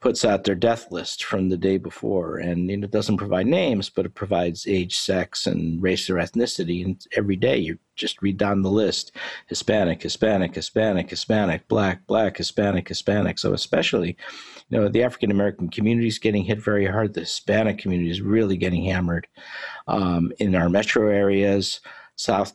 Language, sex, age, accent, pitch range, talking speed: English, male, 50-69, American, 90-105 Hz, 180 wpm